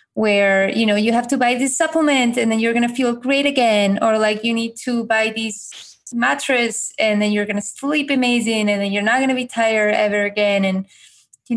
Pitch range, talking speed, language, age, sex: 195-225 Hz, 230 wpm, English, 20-39, female